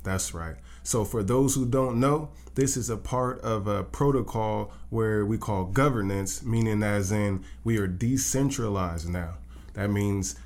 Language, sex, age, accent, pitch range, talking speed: English, male, 20-39, American, 95-115 Hz, 160 wpm